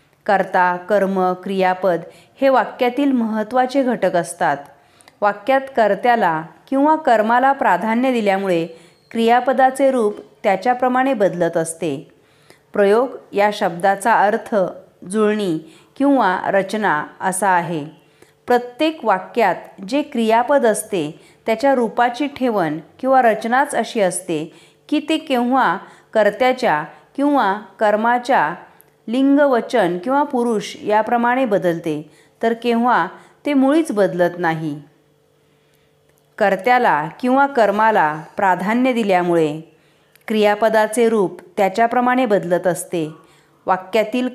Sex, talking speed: female, 95 wpm